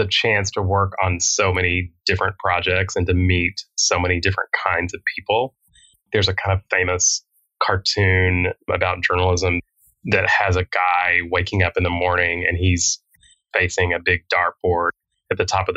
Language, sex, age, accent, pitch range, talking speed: English, male, 20-39, American, 90-100 Hz, 170 wpm